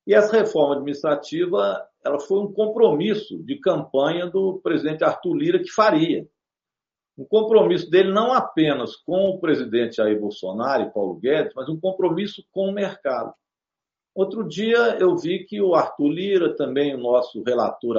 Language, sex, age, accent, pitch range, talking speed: Portuguese, male, 50-69, Brazilian, 145-210 Hz, 155 wpm